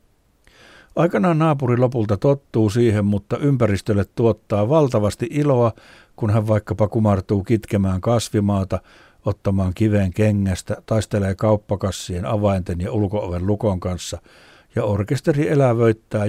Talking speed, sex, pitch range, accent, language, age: 105 wpm, male, 95-120 Hz, native, Finnish, 60-79